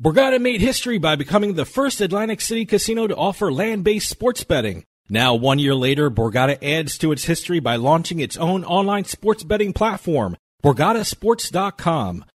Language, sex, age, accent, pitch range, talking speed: English, male, 40-59, American, 130-195 Hz, 160 wpm